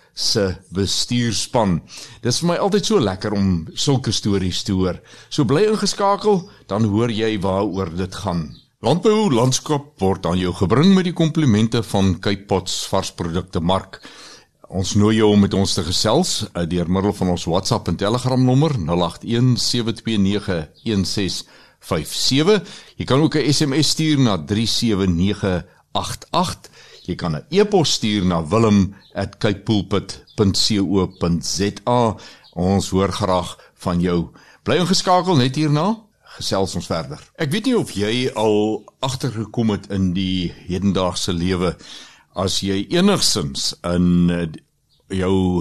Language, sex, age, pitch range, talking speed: Swedish, male, 60-79, 95-125 Hz, 125 wpm